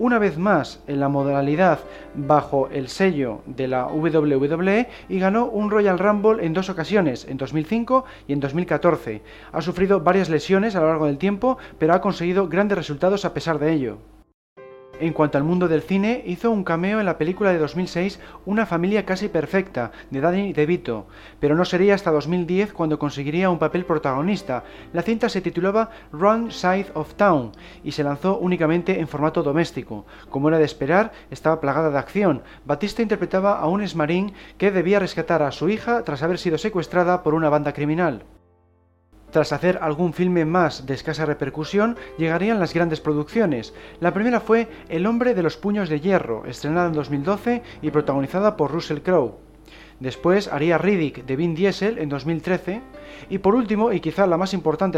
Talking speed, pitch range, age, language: 180 wpm, 150-195 Hz, 30-49, Spanish